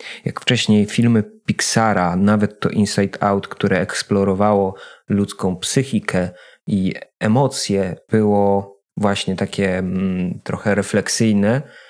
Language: Polish